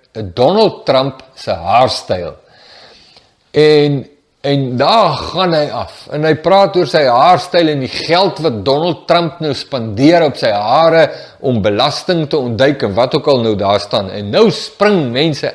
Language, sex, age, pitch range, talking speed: English, male, 50-69, 125-175 Hz, 160 wpm